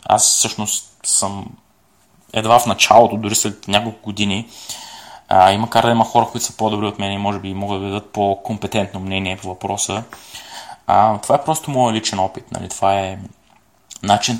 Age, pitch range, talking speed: 20-39, 95-115 Hz, 180 wpm